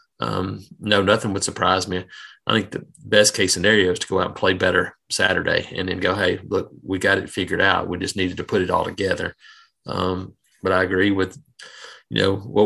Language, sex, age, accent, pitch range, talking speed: English, male, 30-49, American, 95-110 Hz, 220 wpm